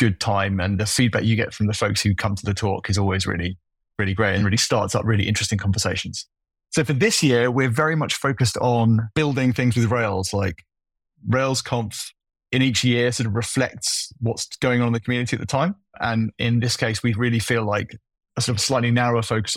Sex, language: male, English